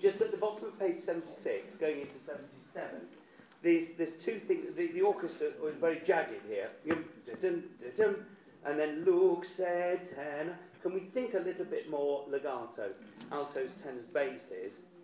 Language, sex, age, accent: English, male, 40-59, British